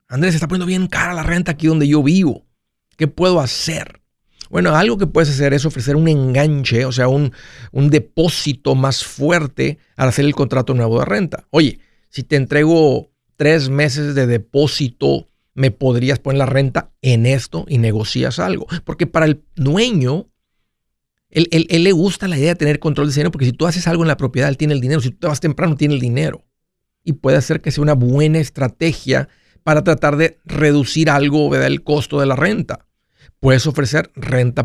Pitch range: 130-155 Hz